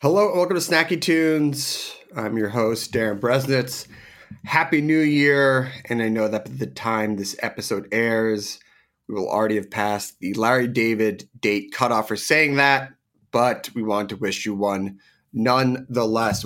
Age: 30-49